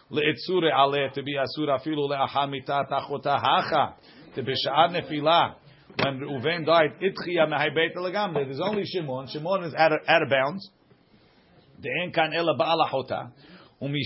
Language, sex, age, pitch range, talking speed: English, male, 50-69, 130-160 Hz, 150 wpm